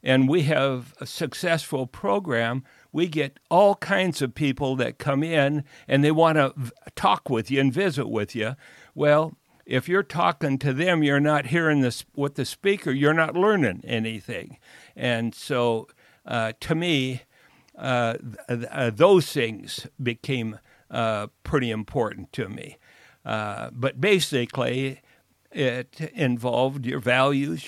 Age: 60-79